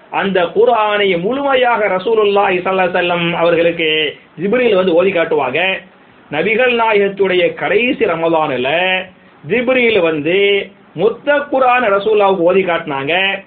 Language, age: English, 30-49